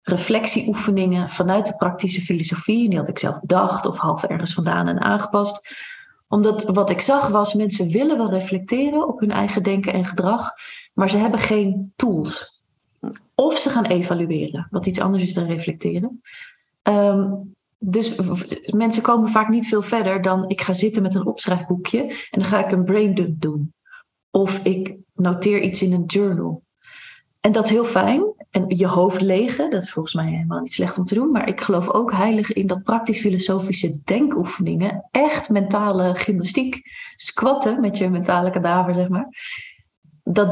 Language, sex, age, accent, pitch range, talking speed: Dutch, female, 30-49, Dutch, 180-215 Hz, 175 wpm